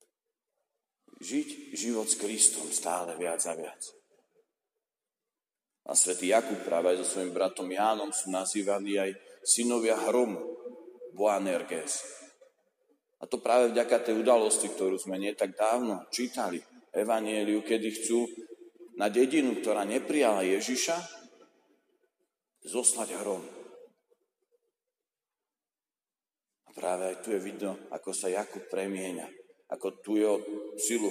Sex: male